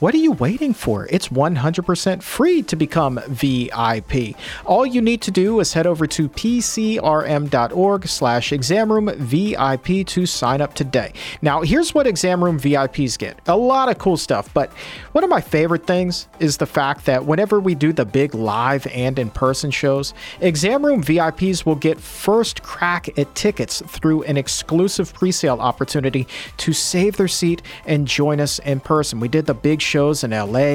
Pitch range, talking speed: 140-185 Hz, 180 wpm